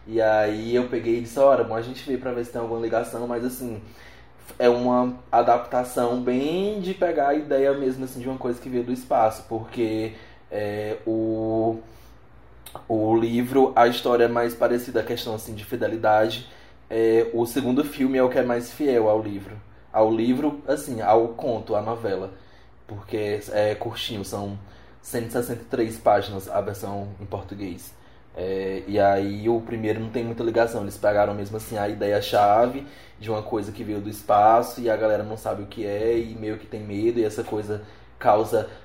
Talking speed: 185 wpm